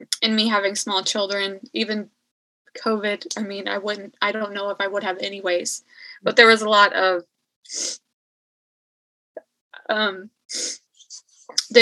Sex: female